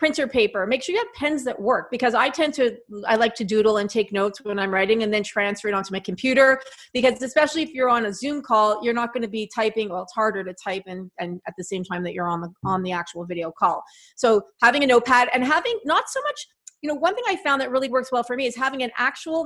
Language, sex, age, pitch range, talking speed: English, female, 30-49, 215-270 Hz, 275 wpm